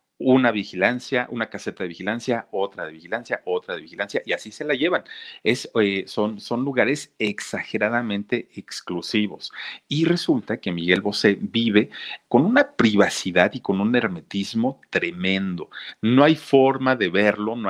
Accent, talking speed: Mexican, 150 wpm